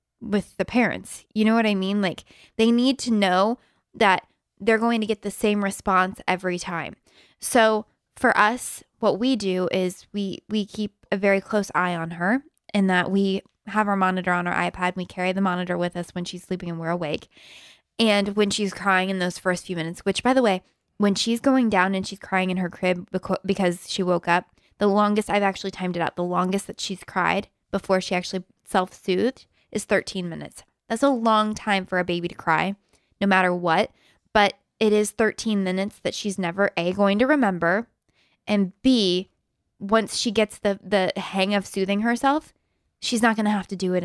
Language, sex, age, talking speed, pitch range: English, female, 20-39, 205 wpm, 185-215 Hz